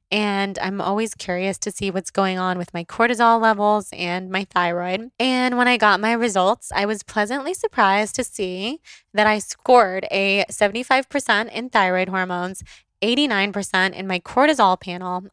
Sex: female